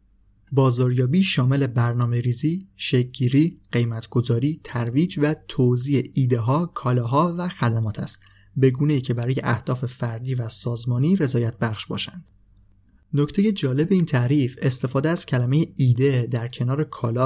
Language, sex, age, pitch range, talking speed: Persian, male, 30-49, 120-145 Hz, 120 wpm